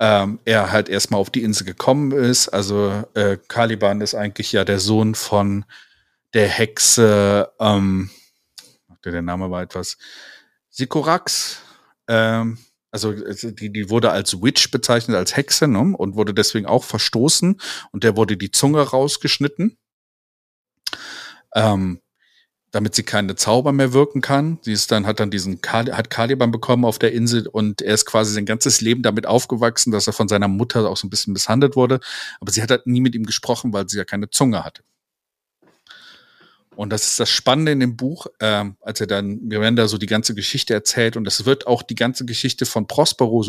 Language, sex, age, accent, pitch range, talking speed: German, male, 40-59, German, 105-120 Hz, 180 wpm